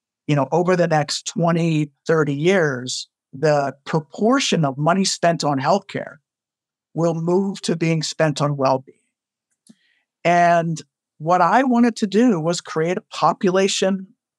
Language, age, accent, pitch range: English, 50-69, American, 150-190 Hz